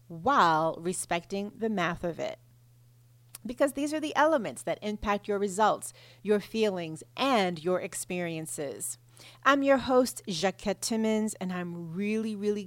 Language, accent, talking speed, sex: English, American, 135 wpm, female